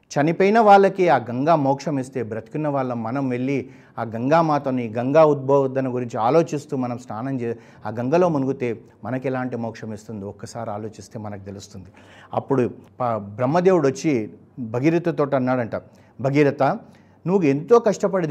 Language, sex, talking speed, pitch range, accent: Telugu, male, 130 wpm, 115-150 Hz, native